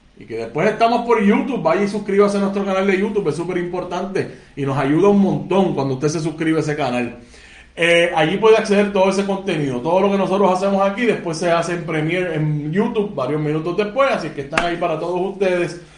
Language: Spanish